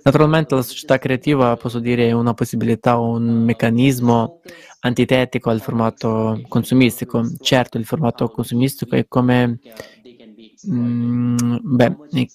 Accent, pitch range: native, 120-130 Hz